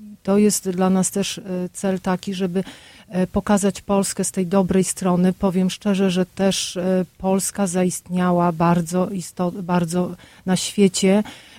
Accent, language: native, Polish